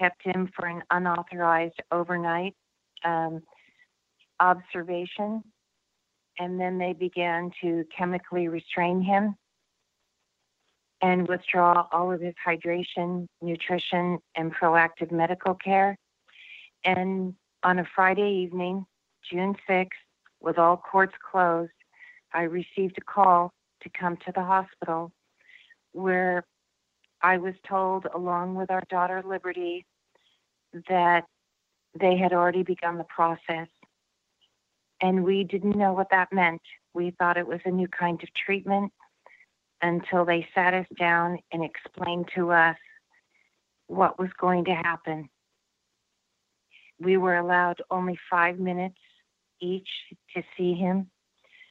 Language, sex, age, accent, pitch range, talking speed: English, female, 40-59, American, 175-185 Hz, 120 wpm